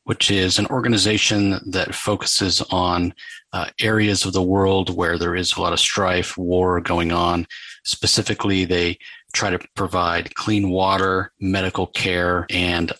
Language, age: English, 40-59